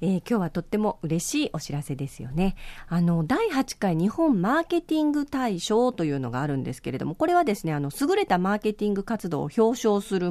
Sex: female